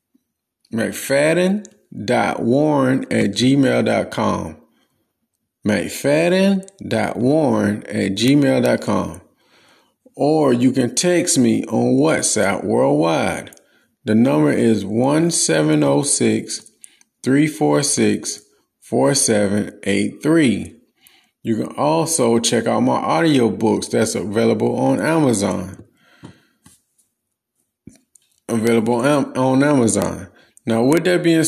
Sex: male